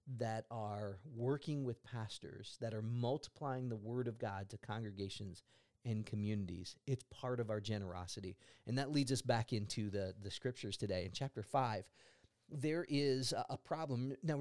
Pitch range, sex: 120-155 Hz, male